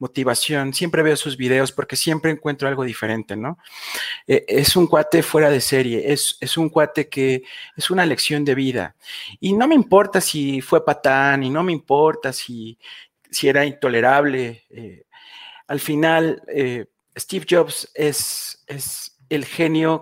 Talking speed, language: 160 wpm, Spanish